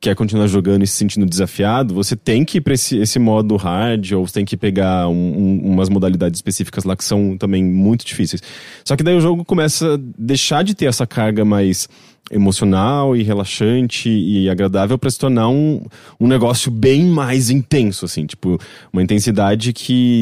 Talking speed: 190 wpm